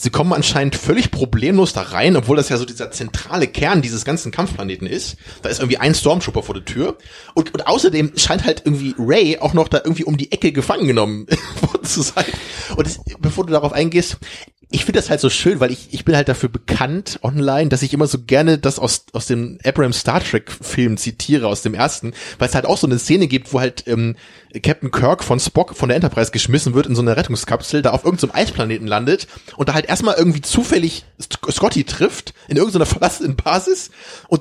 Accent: German